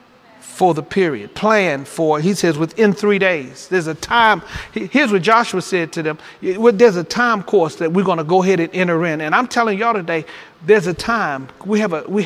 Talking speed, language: 215 wpm, English